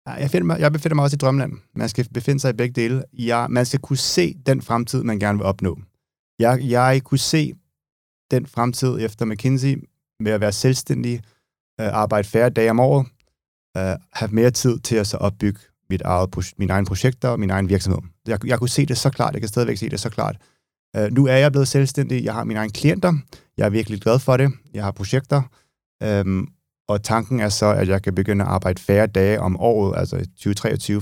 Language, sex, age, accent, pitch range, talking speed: Danish, male, 30-49, native, 95-125 Hz, 205 wpm